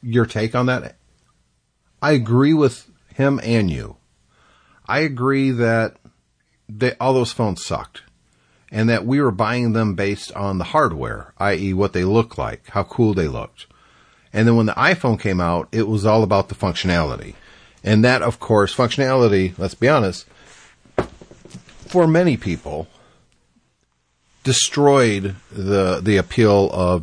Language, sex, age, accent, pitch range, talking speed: English, male, 50-69, American, 90-120 Hz, 145 wpm